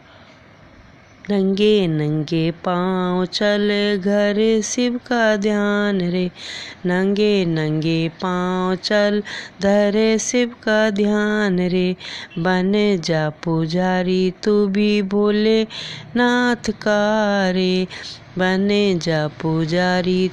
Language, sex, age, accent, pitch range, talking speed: Hindi, female, 20-39, native, 185-250 Hz, 90 wpm